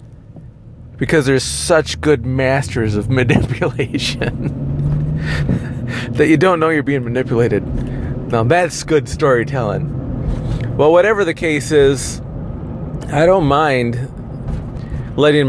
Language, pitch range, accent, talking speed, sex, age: English, 120-145 Hz, American, 105 wpm, male, 40-59